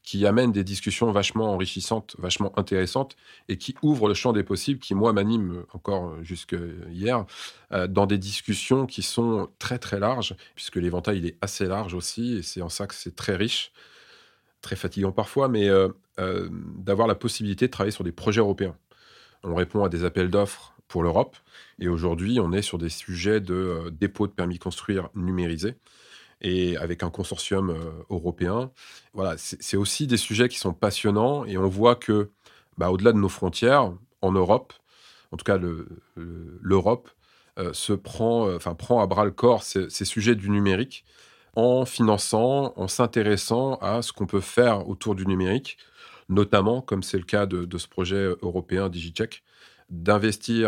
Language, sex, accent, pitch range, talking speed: French, male, French, 90-110 Hz, 175 wpm